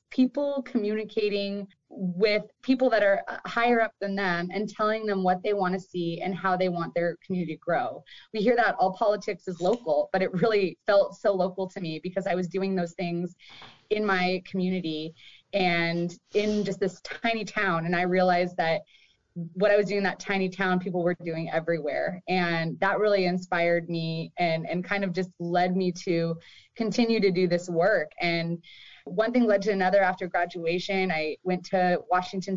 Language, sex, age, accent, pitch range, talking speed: English, female, 20-39, American, 175-200 Hz, 190 wpm